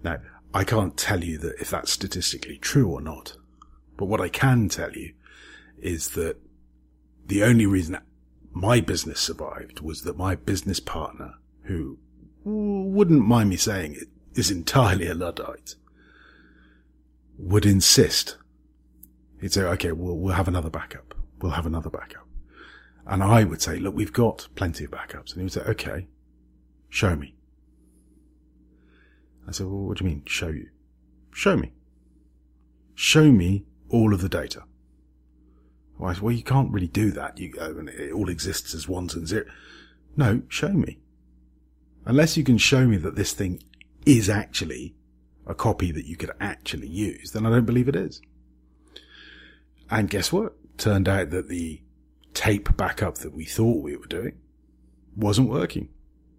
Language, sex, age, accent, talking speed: English, male, 40-59, British, 155 wpm